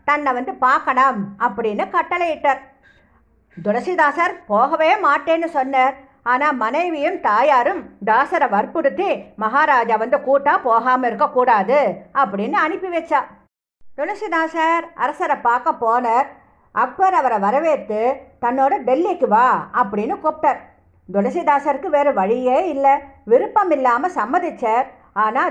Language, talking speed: English, 95 wpm